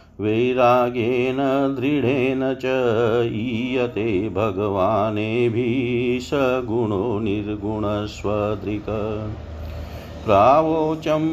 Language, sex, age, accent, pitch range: Hindi, male, 50-69, native, 110-135 Hz